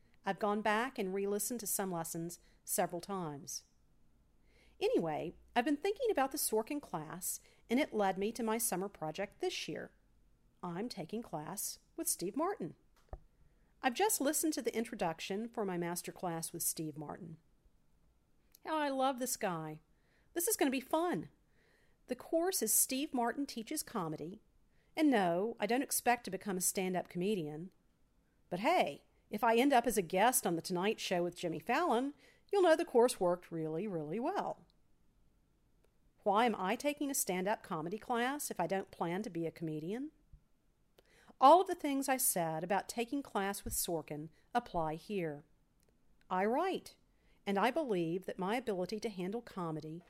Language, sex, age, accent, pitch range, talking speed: English, female, 50-69, American, 175-250 Hz, 165 wpm